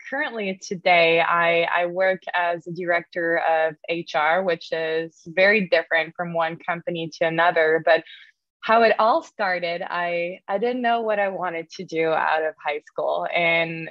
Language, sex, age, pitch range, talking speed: English, female, 20-39, 165-190 Hz, 165 wpm